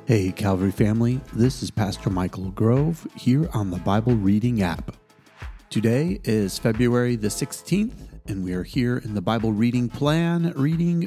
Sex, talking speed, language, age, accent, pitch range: male, 155 wpm, English, 40-59, American, 110-140 Hz